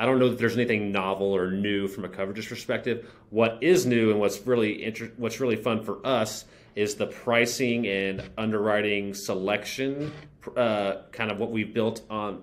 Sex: male